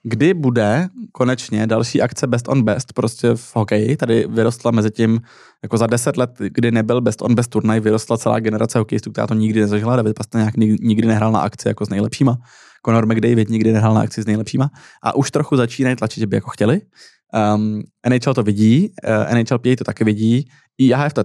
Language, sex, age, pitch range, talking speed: Czech, male, 20-39, 110-125 Hz, 200 wpm